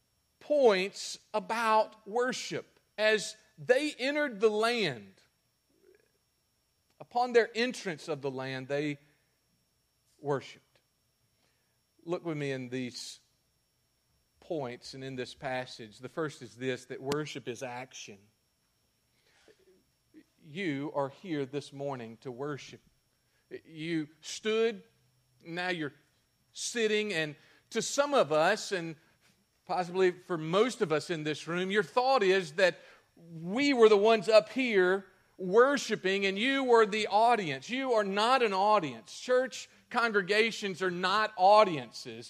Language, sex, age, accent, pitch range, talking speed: English, male, 40-59, American, 155-230 Hz, 120 wpm